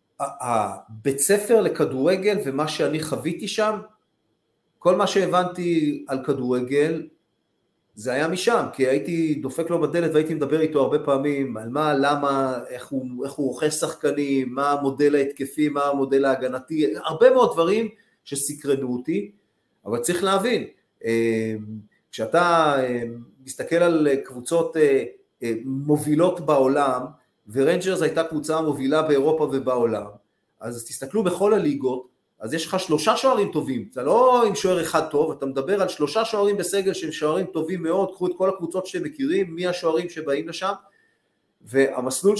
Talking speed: 135 wpm